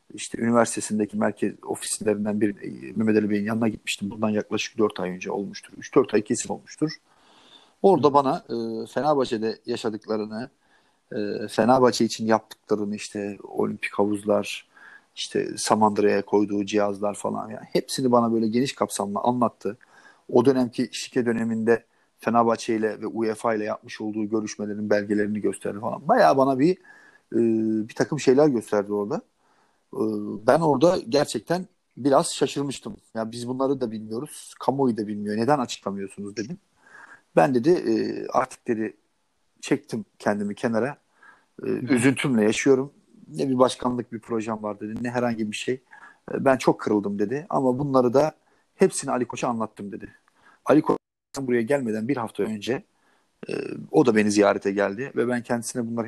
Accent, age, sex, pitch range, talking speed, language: native, 40-59, male, 105-135 Hz, 140 wpm, Turkish